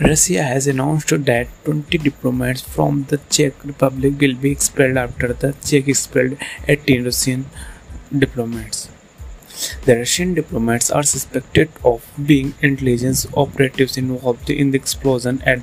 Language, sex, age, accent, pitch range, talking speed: Hindi, male, 30-49, native, 125-145 Hz, 140 wpm